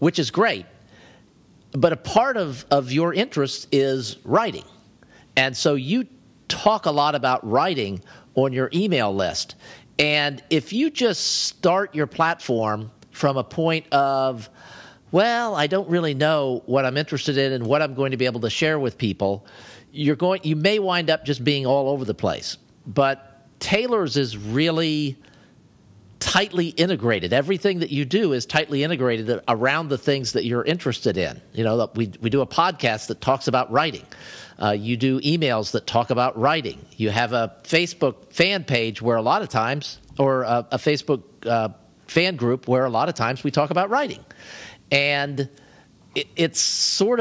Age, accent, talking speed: 50-69, American, 170 wpm